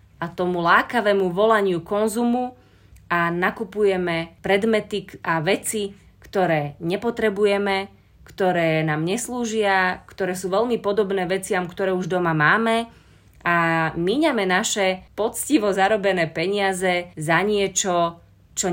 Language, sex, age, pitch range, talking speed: Slovak, female, 30-49, 175-210 Hz, 105 wpm